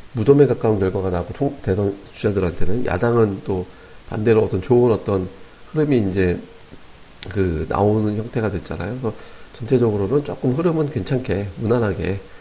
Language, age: Korean, 40-59